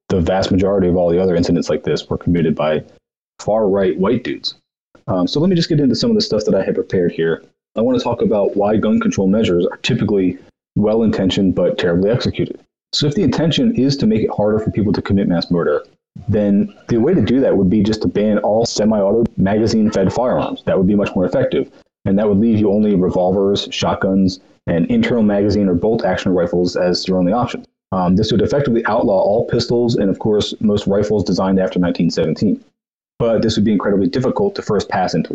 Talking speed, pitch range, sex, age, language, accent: 215 wpm, 95-120 Hz, male, 30-49, English, American